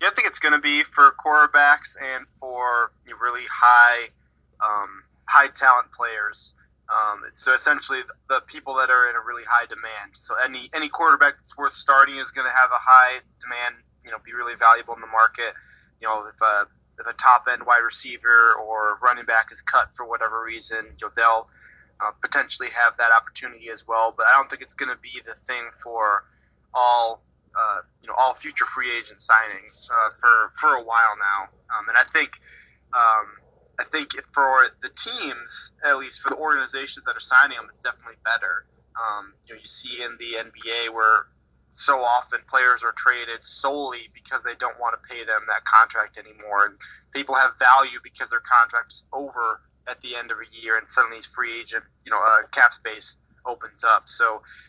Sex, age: male, 20-39